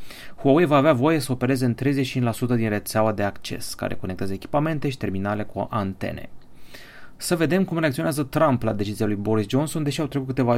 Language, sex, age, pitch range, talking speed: Romanian, male, 30-49, 105-140 Hz, 185 wpm